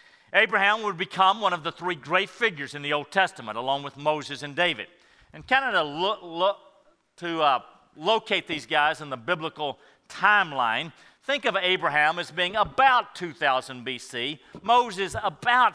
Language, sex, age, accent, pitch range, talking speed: English, male, 50-69, American, 140-200 Hz, 150 wpm